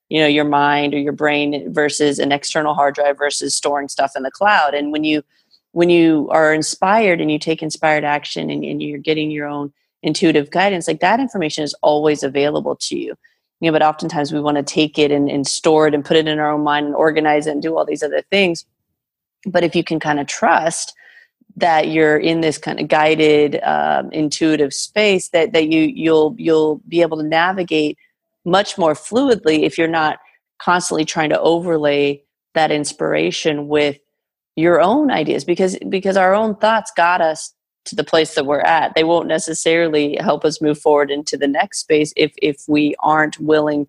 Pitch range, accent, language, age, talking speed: 145-165 Hz, American, English, 30-49, 200 wpm